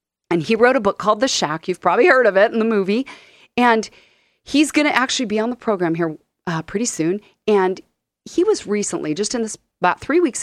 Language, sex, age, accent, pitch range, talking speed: English, female, 40-59, American, 170-250 Hz, 220 wpm